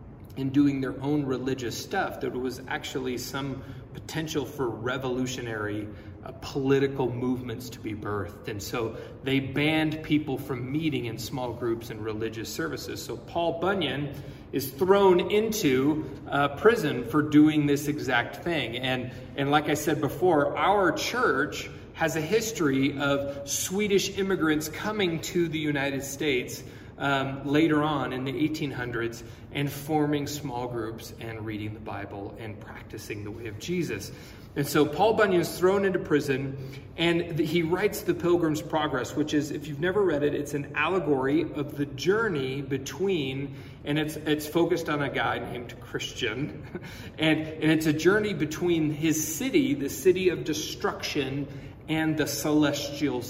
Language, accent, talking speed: English, American, 155 wpm